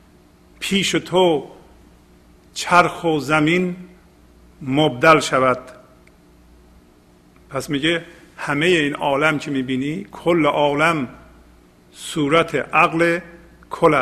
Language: Persian